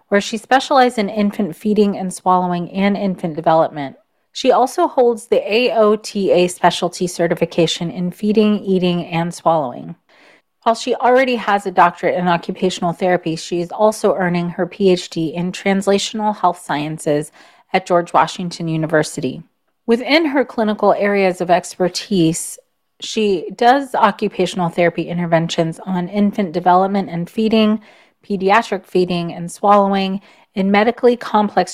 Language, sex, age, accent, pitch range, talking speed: English, female, 30-49, American, 175-215 Hz, 130 wpm